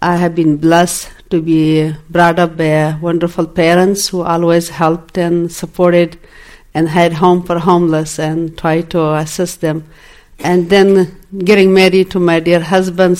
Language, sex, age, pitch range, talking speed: English, female, 50-69, 165-180 Hz, 155 wpm